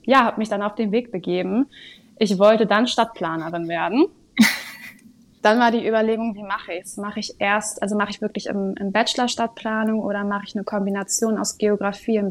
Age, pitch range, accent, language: 20-39, 195-220 Hz, German, German